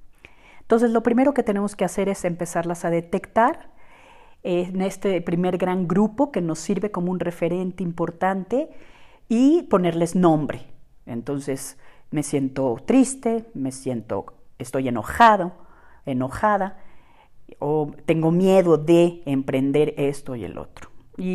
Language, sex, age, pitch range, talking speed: Spanish, female, 40-59, 145-190 Hz, 125 wpm